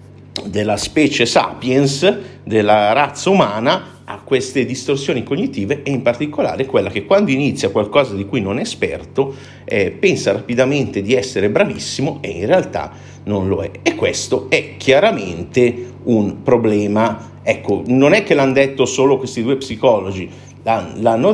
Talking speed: 145 wpm